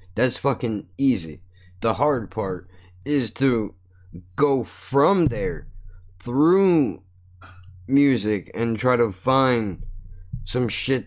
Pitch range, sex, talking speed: 90-125 Hz, male, 105 wpm